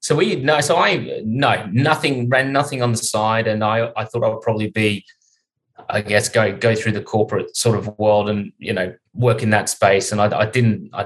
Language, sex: English, male